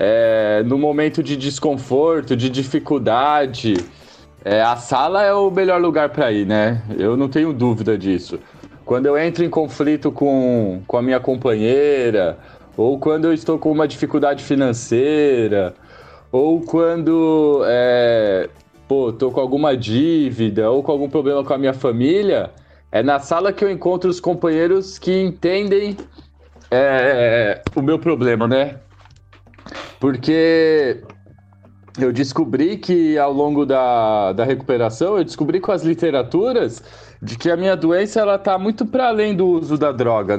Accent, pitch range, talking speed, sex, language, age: Brazilian, 125-175 Hz, 140 wpm, male, Portuguese, 20-39